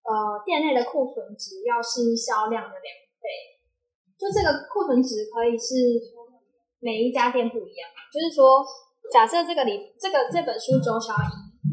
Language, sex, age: Chinese, female, 10-29